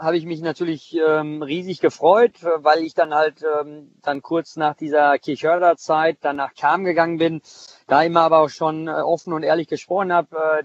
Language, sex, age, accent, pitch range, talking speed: German, male, 40-59, German, 150-180 Hz, 185 wpm